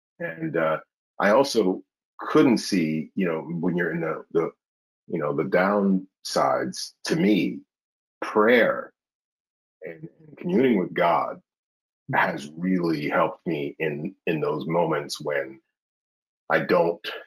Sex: male